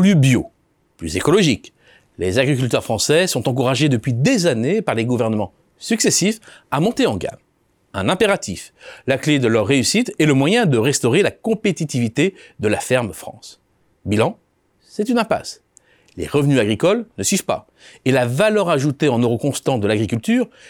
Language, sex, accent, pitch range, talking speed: French, male, French, 125-185 Hz, 160 wpm